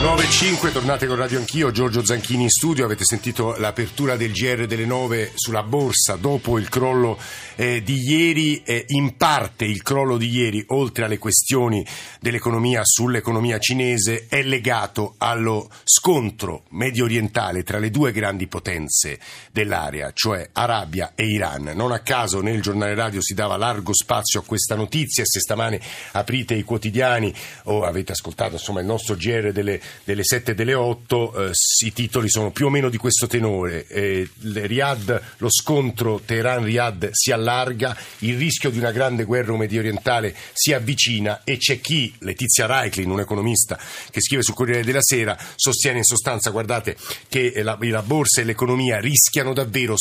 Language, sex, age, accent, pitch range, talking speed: Italian, male, 50-69, native, 105-130 Hz, 165 wpm